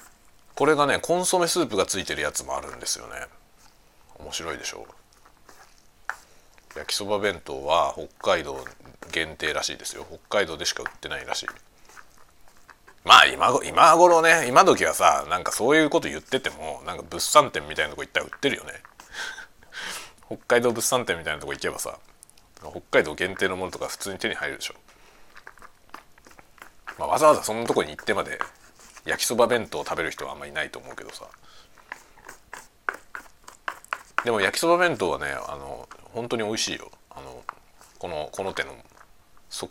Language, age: Japanese, 40-59